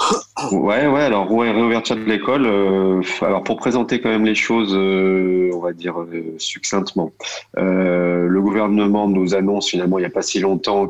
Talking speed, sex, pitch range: 180 wpm, male, 90-100 Hz